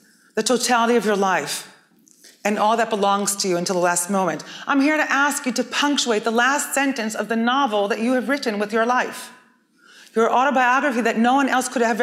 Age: 30-49